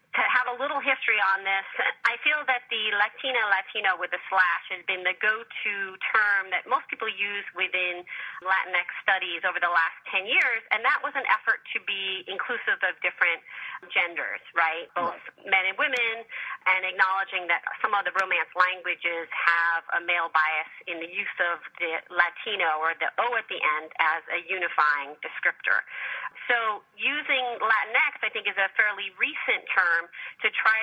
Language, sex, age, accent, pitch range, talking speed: English, female, 30-49, American, 180-230 Hz, 170 wpm